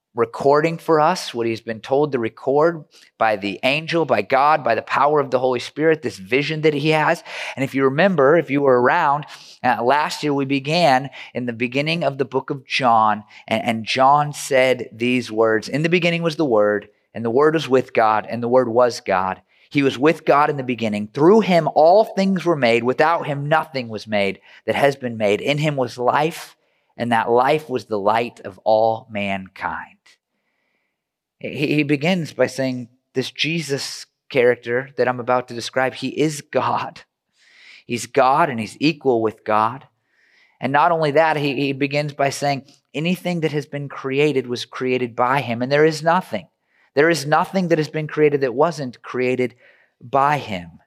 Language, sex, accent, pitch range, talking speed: English, male, American, 120-150 Hz, 190 wpm